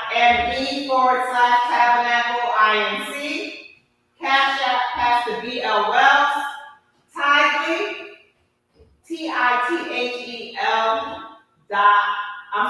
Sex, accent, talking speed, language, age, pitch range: female, American, 105 wpm, English, 30-49, 210-280 Hz